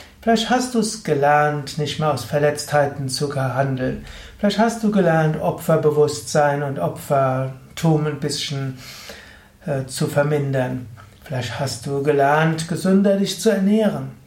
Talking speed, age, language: 130 wpm, 60-79, German